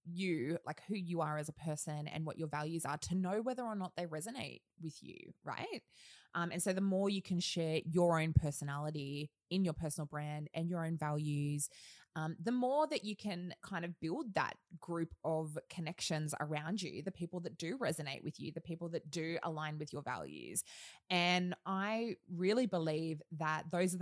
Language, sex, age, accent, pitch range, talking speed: English, female, 20-39, Australian, 155-185 Hz, 195 wpm